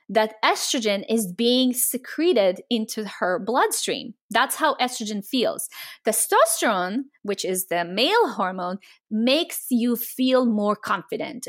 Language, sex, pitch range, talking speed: English, female, 200-265 Hz, 120 wpm